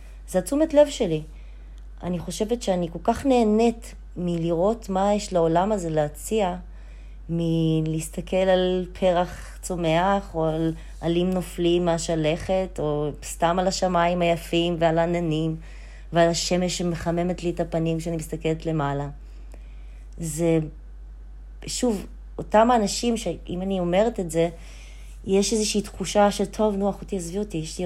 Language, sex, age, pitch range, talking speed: Hebrew, female, 20-39, 155-200 Hz, 130 wpm